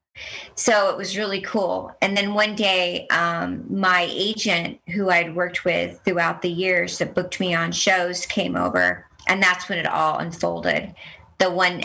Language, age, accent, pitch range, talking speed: English, 40-59, American, 170-200 Hz, 170 wpm